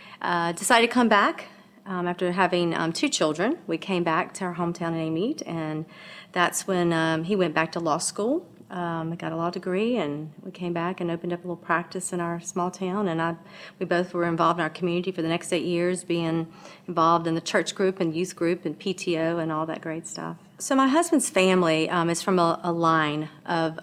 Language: English